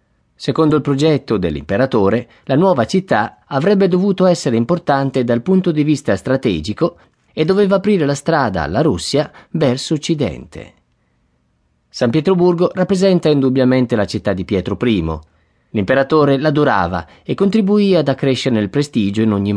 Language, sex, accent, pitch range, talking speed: Italian, male, native, 105-150 Hz, 135 wpm